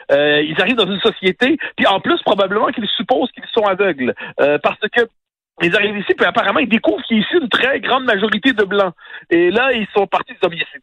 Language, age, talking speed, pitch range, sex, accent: French, 50-69, 240 wpm, 195-260 Hz, male, French